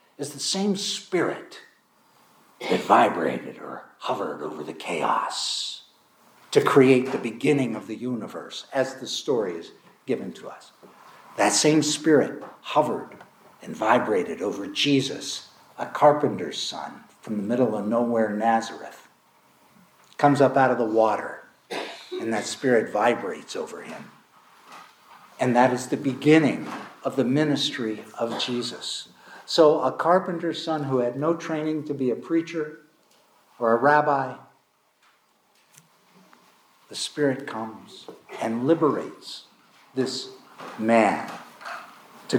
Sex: male